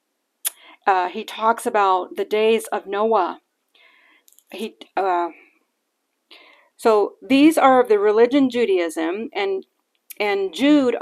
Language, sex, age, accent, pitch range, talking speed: English, female, 40-59, American, 205-320 Hz, 110 wpm